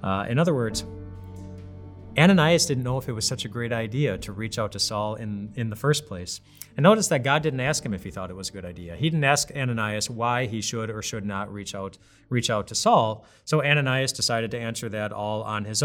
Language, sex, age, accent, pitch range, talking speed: English, male, 30-49, American, 100-125 Hz, 240 wpm